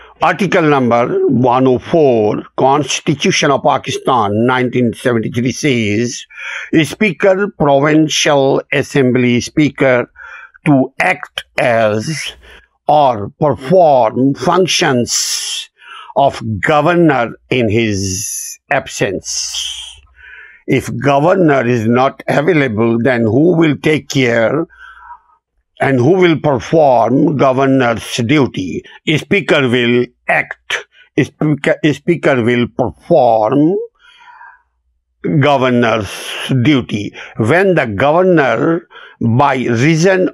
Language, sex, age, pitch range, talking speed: Urdu, male, 60-79, 120-160 Hz, 80 wpm